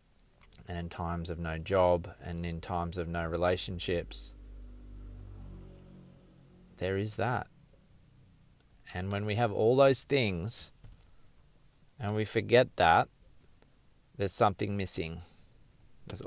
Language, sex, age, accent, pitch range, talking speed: English, male, 20-39, Australian, 85-105 Hz, 110 wpm